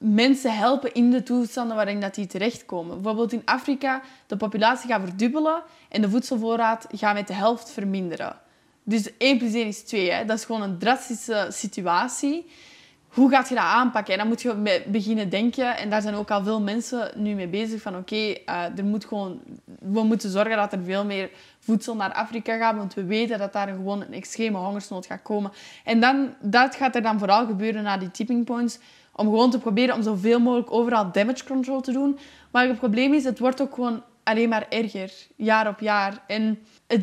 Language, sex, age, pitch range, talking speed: Dutch, female, 10-29, 210-255 Hz, 200 wpm